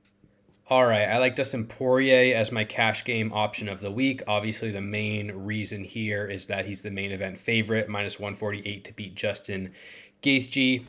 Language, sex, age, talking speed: English, male, 20-39, 175 wpm